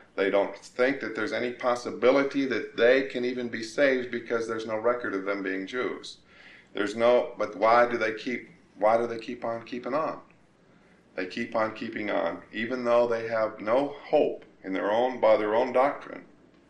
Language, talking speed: English, 190 wpm